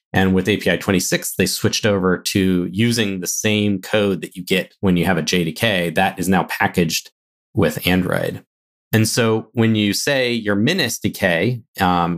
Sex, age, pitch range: male, 30-49, 90-110 Hz